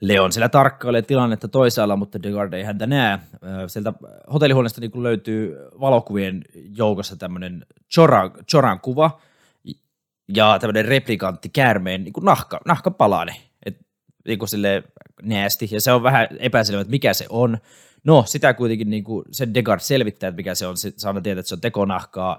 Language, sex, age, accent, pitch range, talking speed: Finnish, male, 20-39, native, 95-120 Hz, 155 wpm